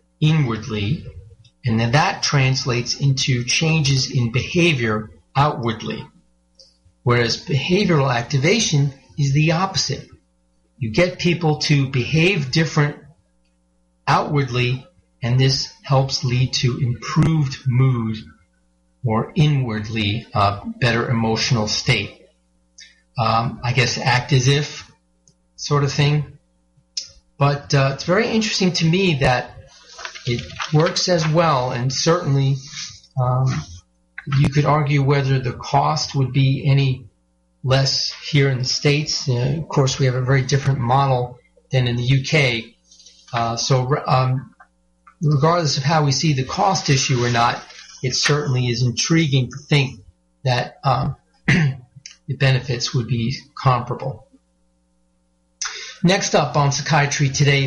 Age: 40-59